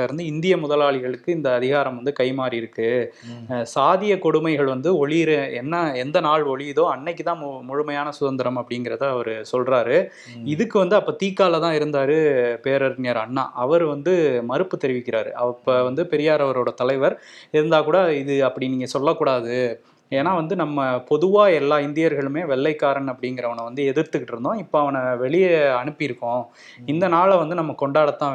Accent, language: native, Tamil